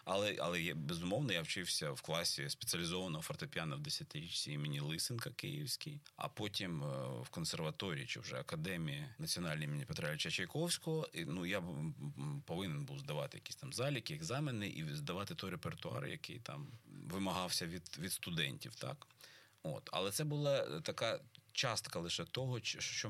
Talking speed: 160 wpm